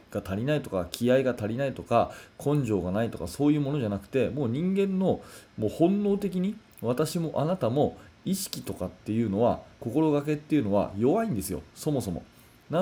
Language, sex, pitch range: Japanese, male, 110-160 Hz